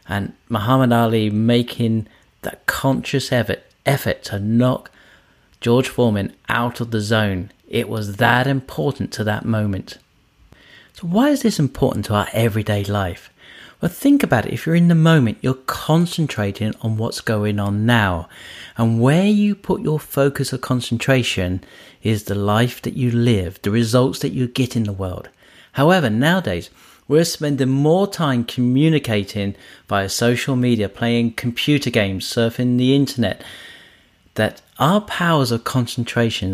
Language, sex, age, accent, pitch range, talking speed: English, male, 40-59, British, 110-130 Hz, 150 wpm